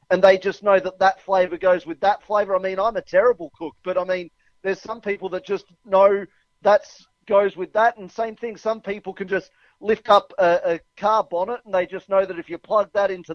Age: 40-59